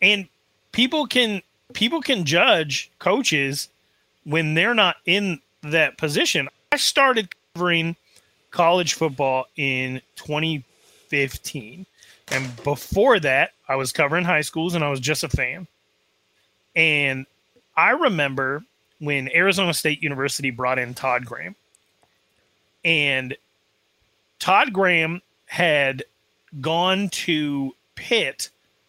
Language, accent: English, American